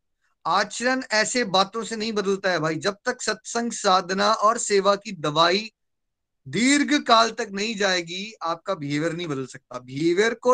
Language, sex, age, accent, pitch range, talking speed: Hindi, male, 20-39, native, 165-230 Hz, 160 wpm